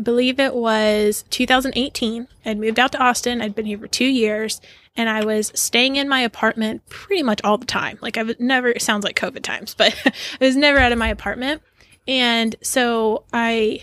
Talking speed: 210 wpm